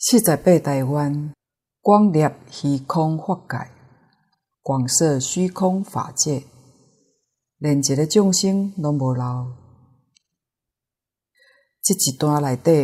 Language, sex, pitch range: Chinese, female, 135-170 Hz